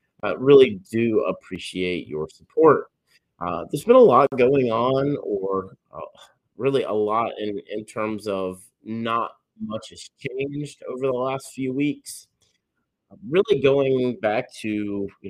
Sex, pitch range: male, 95-120 Hz